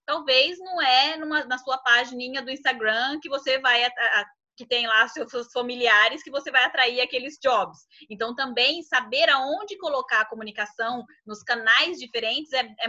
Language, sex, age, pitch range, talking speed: Portuguese, female, 20-39, 235-310 Hz, 160 wpm